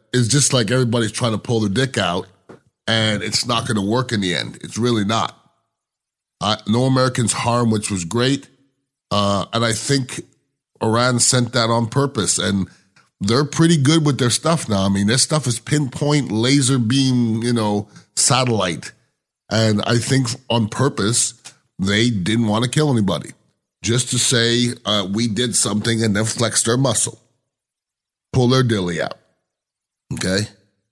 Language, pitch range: English, 105-125 Hz